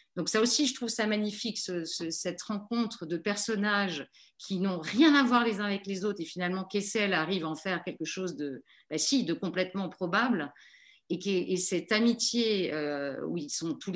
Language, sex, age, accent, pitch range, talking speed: French, female, 40-59, French, 170-225 Hz, 180 wpm